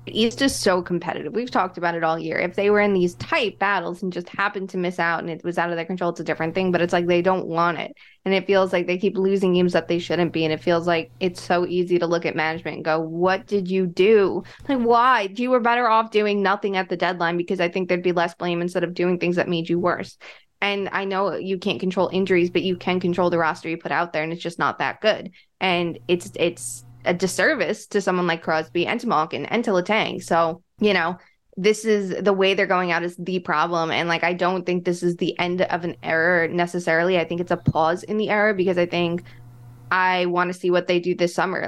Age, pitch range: 20-39, 170-190 Hz